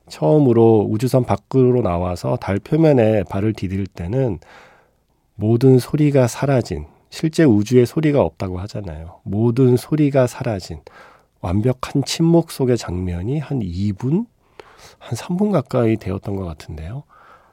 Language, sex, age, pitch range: Korean, male, 40-59, 95-130 Hz